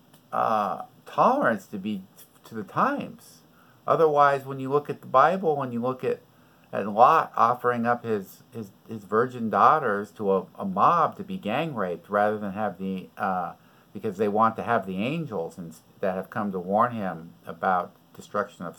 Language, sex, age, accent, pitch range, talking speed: English, male, 50-69, American, 100-125 Hz, 185 wpm